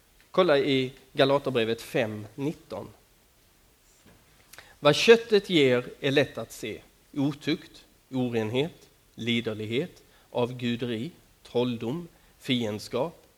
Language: Swedish